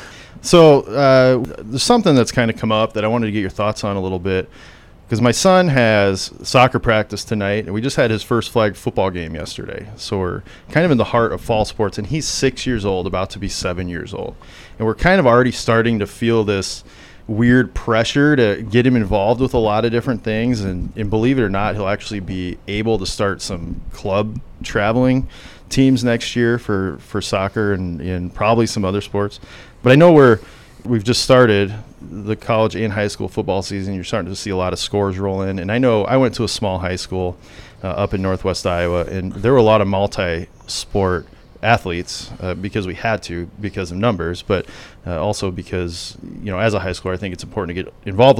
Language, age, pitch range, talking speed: English, 30-49, 95-120 Hz, 220 wpm